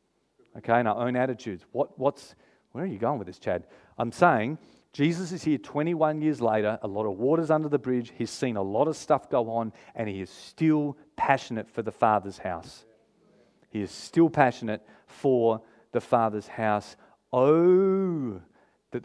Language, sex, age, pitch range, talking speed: English, male, 40-59, 115-150 Hz, 175 wpm